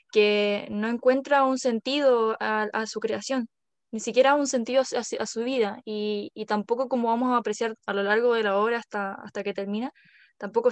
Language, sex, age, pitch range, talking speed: Spanish, female, 10-29, 210-245 Hz, 190 wpm